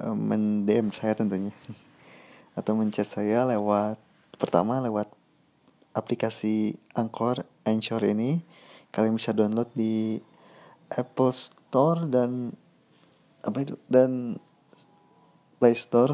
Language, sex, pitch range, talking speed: Indonesian, male, 110-130 Hz, 95 wpm